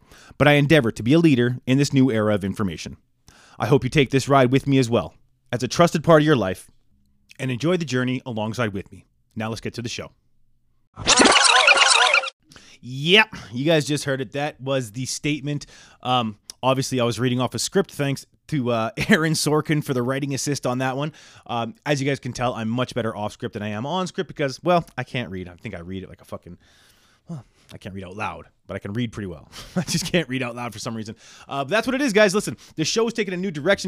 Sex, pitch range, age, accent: male, 115-150 Hz, 20-39, American